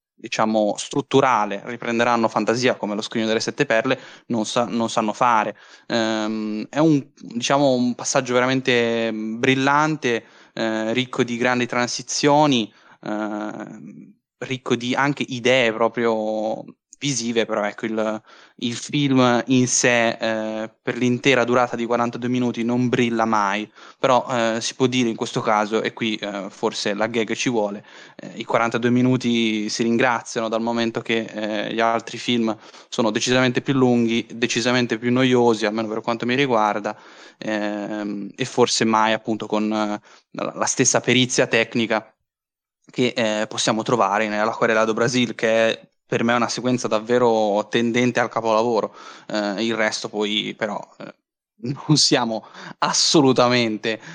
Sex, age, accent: male, 10-29, native